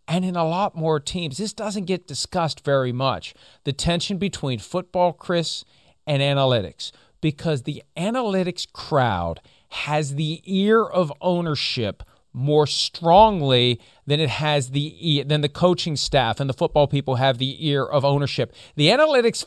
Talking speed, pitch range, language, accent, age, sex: 150 wpm, 150-210 Hz, English, American, 40-59, male